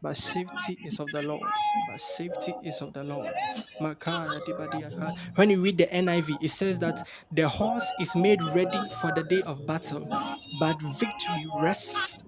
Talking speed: 160 wpm